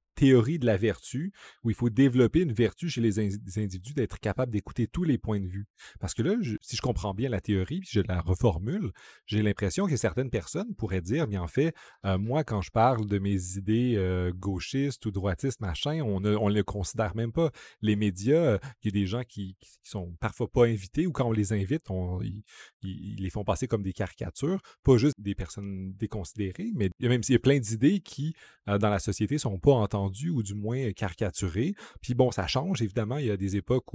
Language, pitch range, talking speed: French, 100-125 Hz, 225 wpm